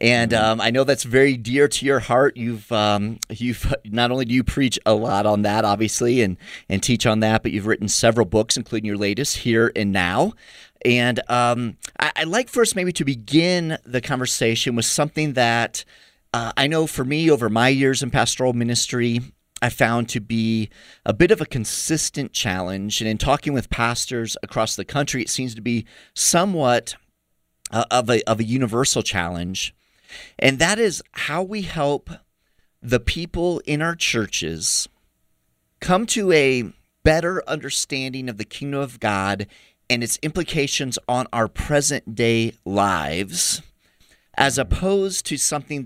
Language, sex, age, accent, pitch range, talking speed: English, male, 30-49, American, 110-140 Hz, 165 wpm